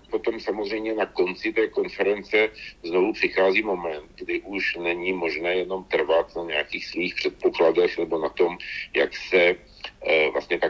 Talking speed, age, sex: 150 wpm, 50-69, male